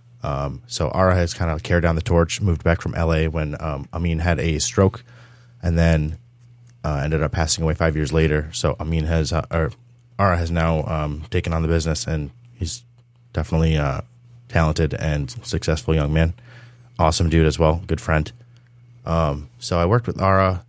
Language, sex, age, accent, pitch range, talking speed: English, male, 20-39, American, 80-120 Hz, 190 wpm